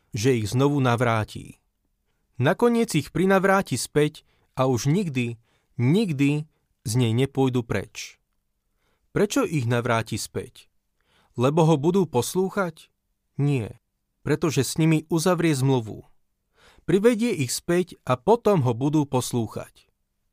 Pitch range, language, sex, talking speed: 130-165 Hz, Slovak, male, 110 wpm